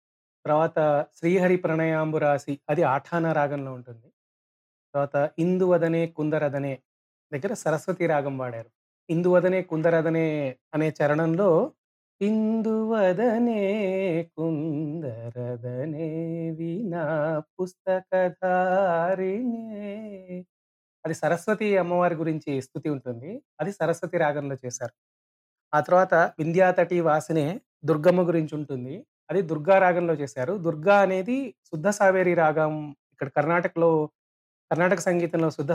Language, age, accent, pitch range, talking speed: Telugu, 30-49, native, 145-180 Hz, 90 wpm